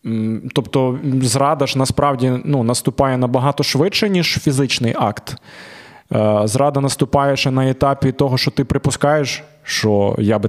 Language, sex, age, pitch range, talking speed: Ukrainian, male, 20-39, 125-150 Hz, 130 wpm